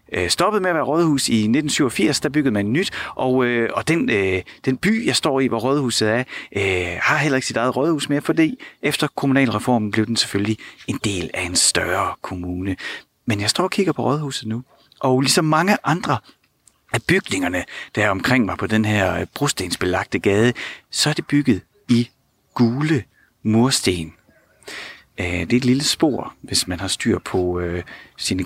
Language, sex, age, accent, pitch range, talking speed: Danish, male, 30-49, native, 105-150 Hz, 175 wpm